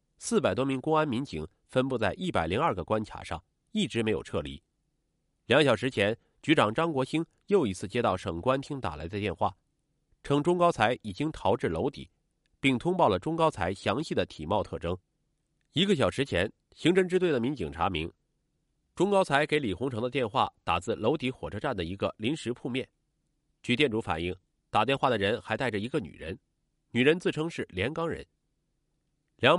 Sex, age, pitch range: male, 30-49, 105-155 Hz